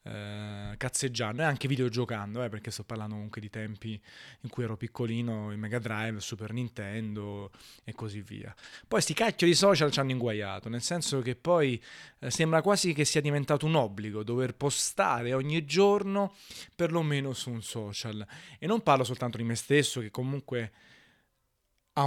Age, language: 20-39, Italian